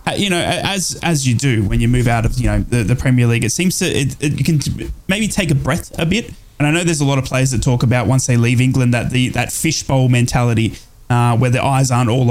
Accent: Australian